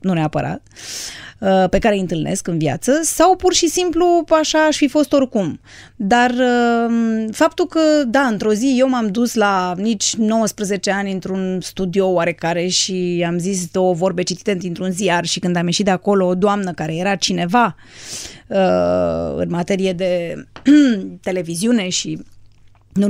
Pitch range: 180-240 Hz